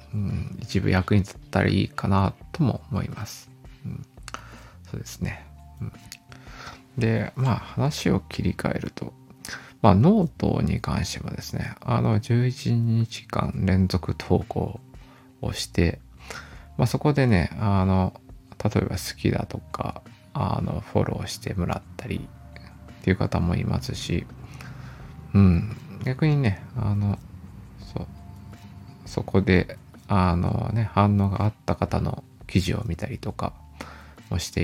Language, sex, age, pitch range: Japanese, male, 20-39, 95-125 Hz